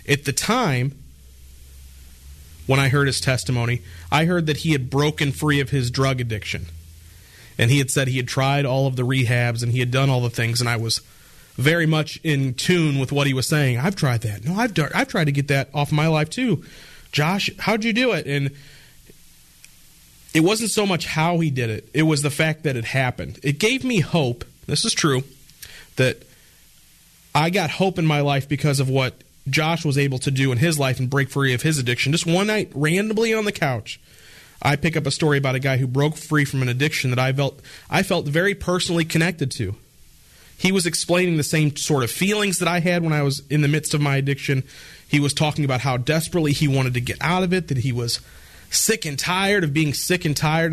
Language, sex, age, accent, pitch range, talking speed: English, male, 30-49, American, 130-160 Hz, 225 wpm